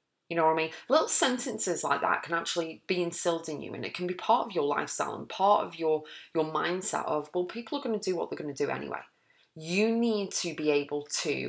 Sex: female